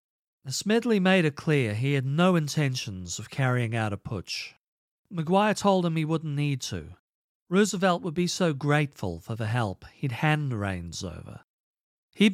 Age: 40-59